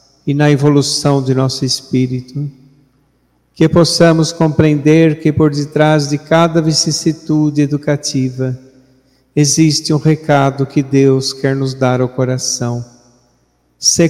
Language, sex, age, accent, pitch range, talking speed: Portuguese, male, 50-69, Brazilian, 130-150 Hz, 115 wpm